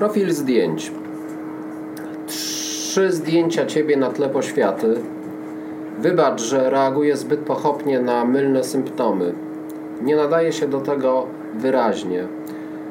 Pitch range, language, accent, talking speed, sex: 130-155 Hz, Czech, Polish, 100 wpm, male